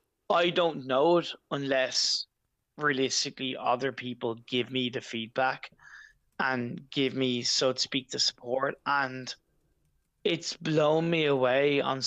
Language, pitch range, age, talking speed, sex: English, 120-140 Hz, 20-39, 130 wpm, male